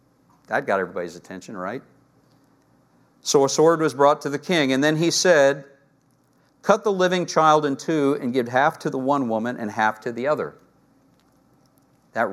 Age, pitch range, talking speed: 50-69, 130-190 Hz, 175 wpm